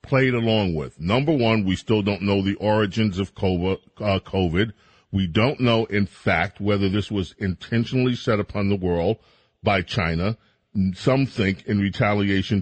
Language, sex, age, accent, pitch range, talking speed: English, male, 40-59, American, 95-120 Hz, 150 wpm